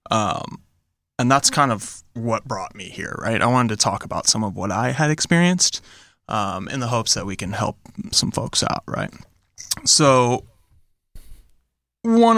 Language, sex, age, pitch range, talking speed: English, male, 20-39, 110-125 Hz, 170 wpm